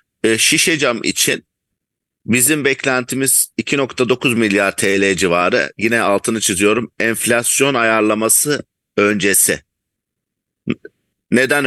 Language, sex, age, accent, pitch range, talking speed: English, male, 50-69, Turkish, 100-120 Hz, 75 wpm